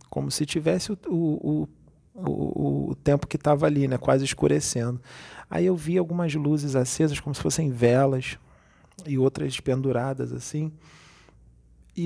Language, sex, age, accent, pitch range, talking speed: Portuguese, male, 40-59, Brazilian, 125-150 Hz, 140 wpm